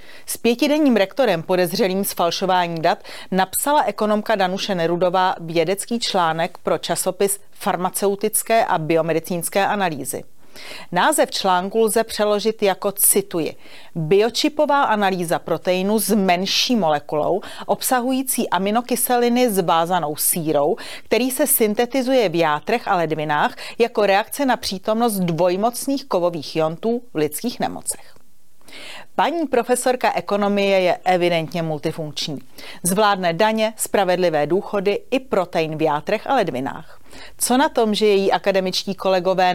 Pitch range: 175-220 Hz